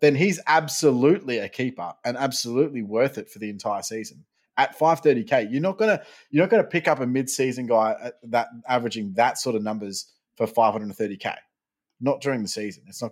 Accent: Australian